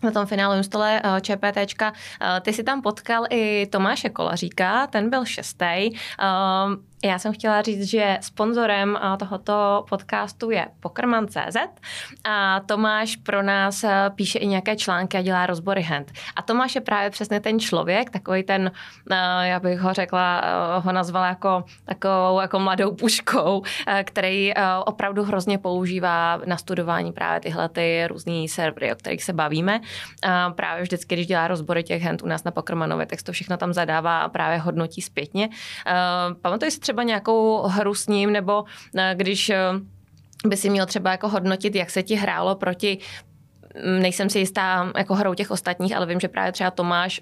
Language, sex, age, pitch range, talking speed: Czech, female, 20-39, 180-205 Hz, 160 wpm